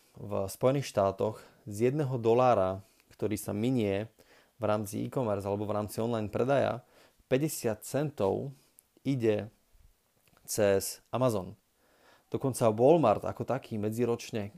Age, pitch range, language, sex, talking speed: 30-49, 105-120 Hz, Slovak, male, 110 wpm